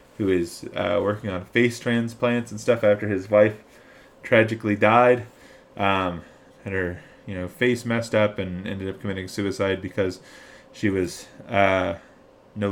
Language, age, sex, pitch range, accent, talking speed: English, 30-49, male, 100-120 Hz, American, 150 wpm